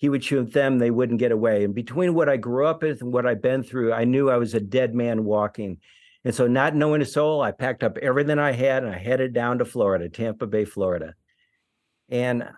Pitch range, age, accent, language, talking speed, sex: 120-150 Hz, 60-79, American, English, 240 wpm, male